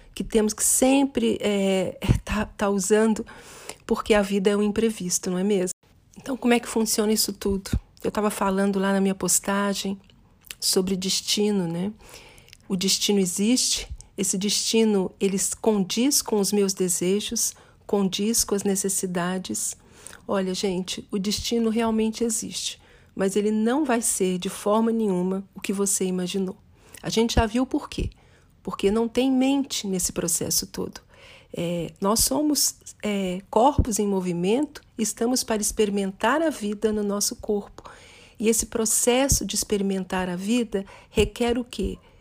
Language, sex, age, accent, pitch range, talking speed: English, female, 40-59, Brazilian, 195-230 Hz, 150 wpm